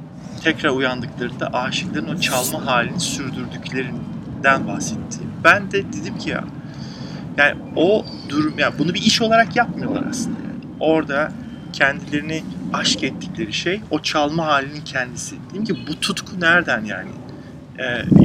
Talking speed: 130 wpm